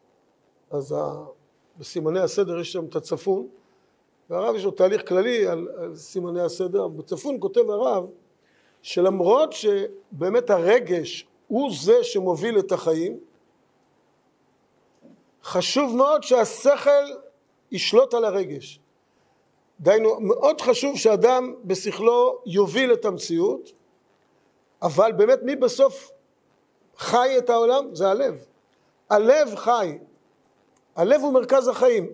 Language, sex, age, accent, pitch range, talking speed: Hebrew, male, 50-69, native, 190-290 Hz, 105 wpm